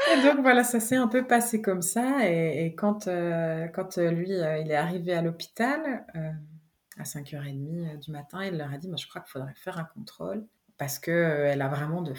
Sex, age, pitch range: female, 30-49, 150-190 Hz